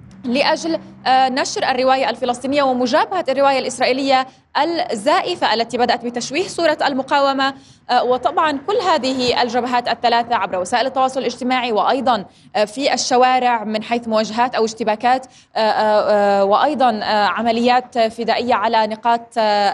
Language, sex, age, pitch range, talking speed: Arabic, female, 20-39, 220-275 Hz, 105 wpm